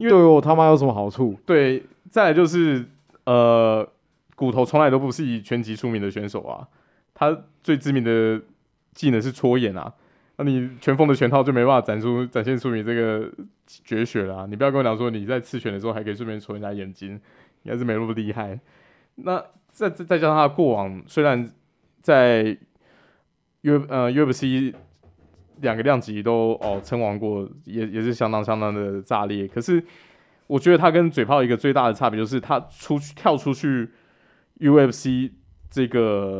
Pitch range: 110-135 Hz